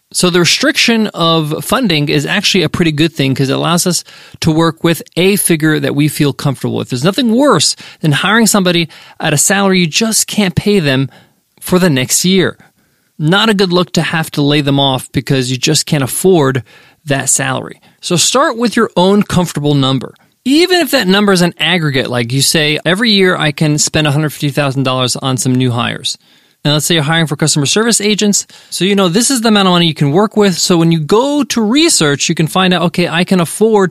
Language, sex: English, male